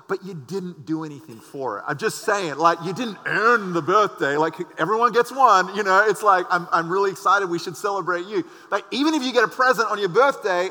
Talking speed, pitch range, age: 235 wpm, 155-210 Hz, 30-49